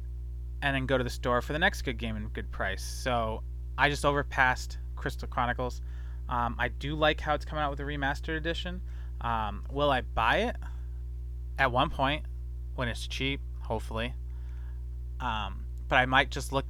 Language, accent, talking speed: English, American, 180 wpm